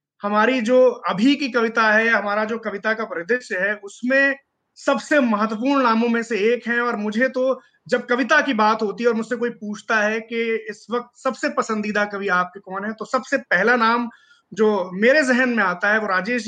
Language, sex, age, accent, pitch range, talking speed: Hindi, male, 30-49, native, 210-255 Hz, 200 wpm